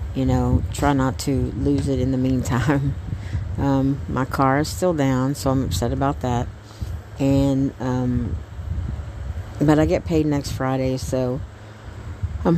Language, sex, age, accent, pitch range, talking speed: English, female, 60-79, American, 105-145 Hz, 150 wpm